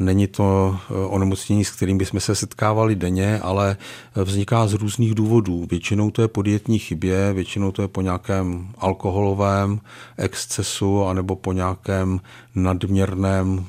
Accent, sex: native, male